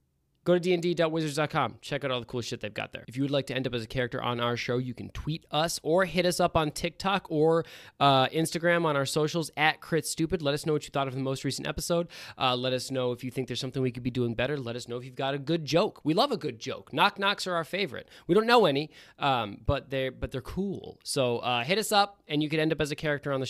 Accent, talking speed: American, 290 wpm